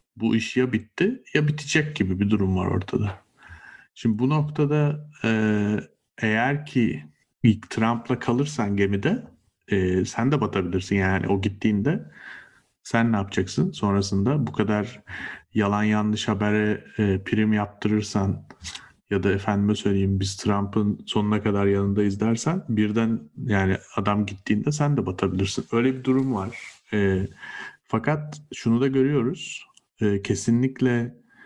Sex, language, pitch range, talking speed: male, Turkish, 100-125 Hz, 125 wpm